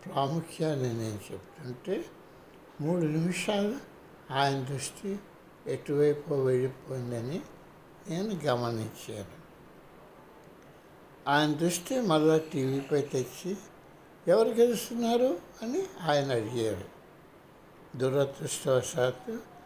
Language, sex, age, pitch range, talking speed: Telugu, male, 60-79, 130-185 Hz, 70 wpm